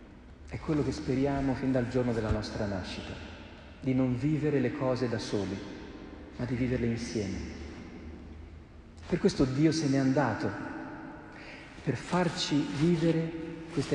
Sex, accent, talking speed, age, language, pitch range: male, native, 135 wpm, 40-59, Italian, 110-145 Hz